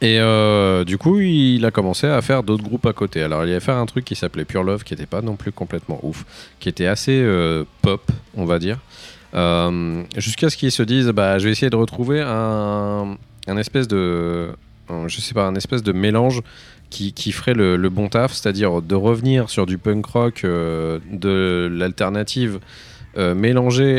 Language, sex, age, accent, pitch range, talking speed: French, male, 30-49, French, 85-115 Hz, 205 wpm